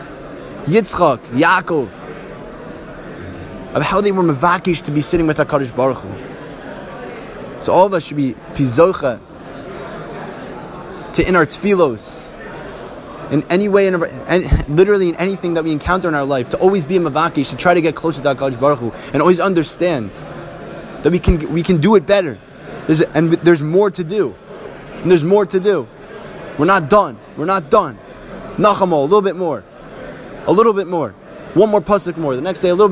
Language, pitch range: English, 145-185 Hz